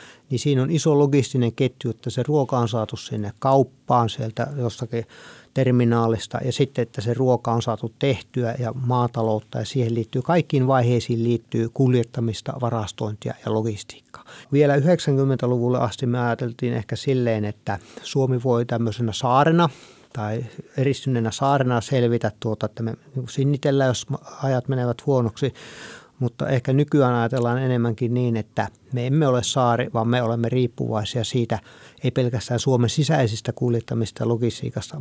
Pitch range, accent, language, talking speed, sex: 115-135 Hz, native, Finnish, 140 wpm, male